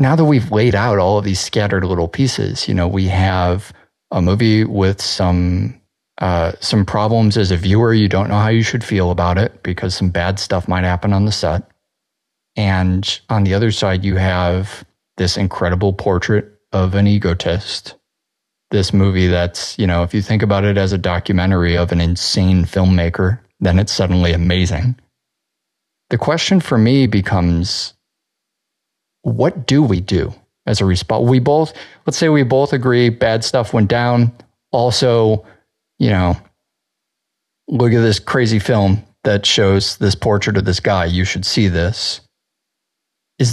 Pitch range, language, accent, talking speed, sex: 95-115 Hz, English, American, 165 wpm, male